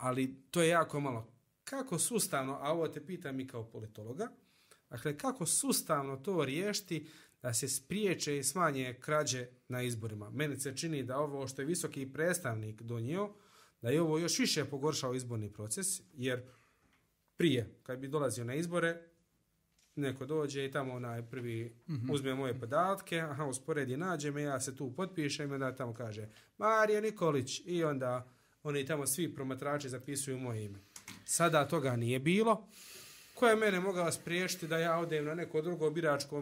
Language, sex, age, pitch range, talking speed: Croatian, male, 30-49, 130-165 Hz, 160 wpm